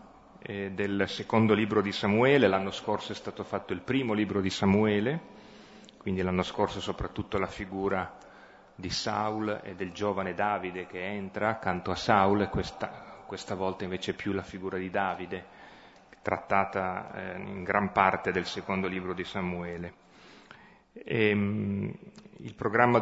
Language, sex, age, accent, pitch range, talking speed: Italian, male, 30-49, native, 95-105 Hz, 135 wpm